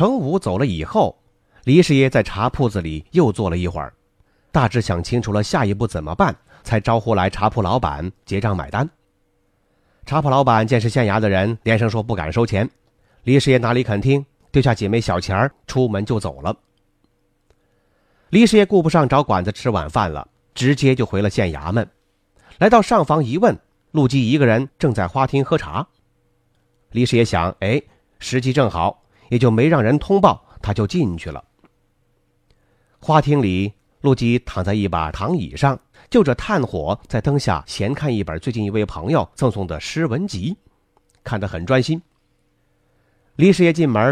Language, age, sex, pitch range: Chinese, 30-49, male, 95-135 Hz